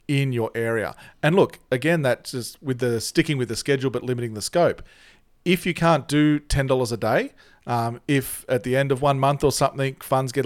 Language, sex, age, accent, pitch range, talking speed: English, male, 40-59, Australian, 115-145 Hz, 210 wpm